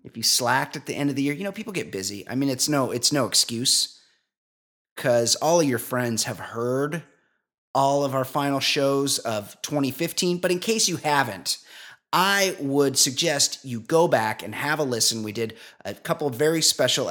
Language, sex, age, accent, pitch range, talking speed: English, male, 30-49, American, 120-145 Hz, 200 wpm